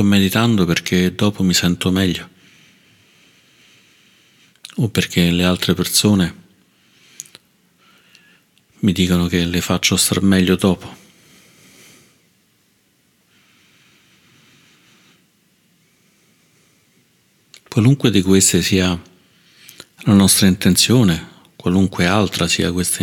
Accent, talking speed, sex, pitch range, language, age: native, 80 wpm, male, 90-100 Hz, Italian, 50-69